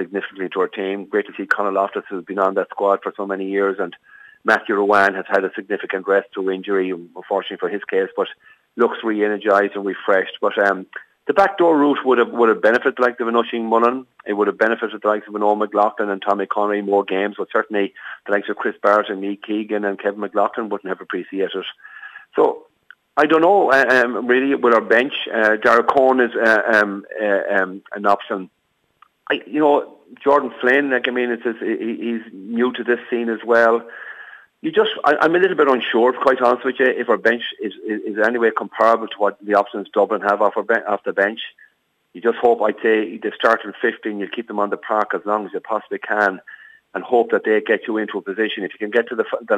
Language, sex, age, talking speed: English, male, 40-59, 220 wpm